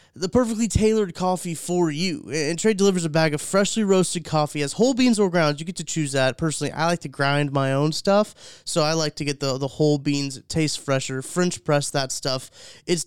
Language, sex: English, male